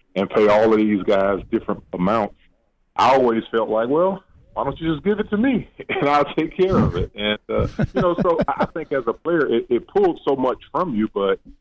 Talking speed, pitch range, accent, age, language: 235 wpm, 95-125 Hz, American, 40-59, English